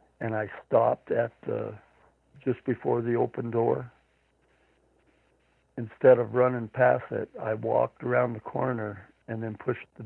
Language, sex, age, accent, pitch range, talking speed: English, male, 60-79, American, 110-125 Hz, 145 wpm